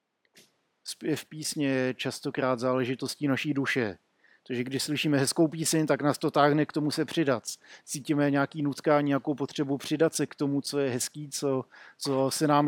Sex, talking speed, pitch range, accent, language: male, 170 wpm, 130-150 Hz, native, Czech